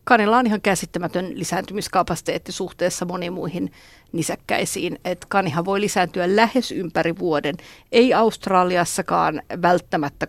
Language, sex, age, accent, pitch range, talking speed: Finnish, female, 50-69, native, 170-205 Hz, 105 wpm